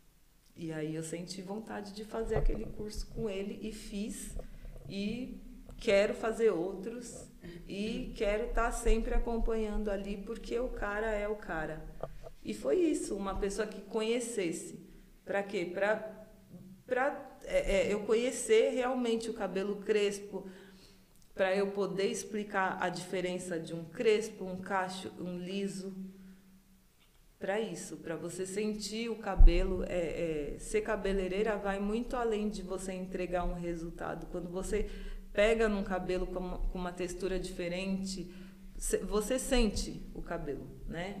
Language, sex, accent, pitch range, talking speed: Portuguese, female, Brazilian, 175-215 Hz, 140 wpm